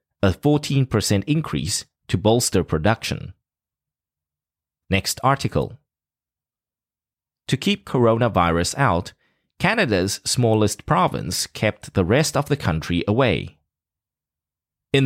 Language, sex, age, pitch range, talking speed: English, male, 30-49, 85-130 Hz, 90 wpm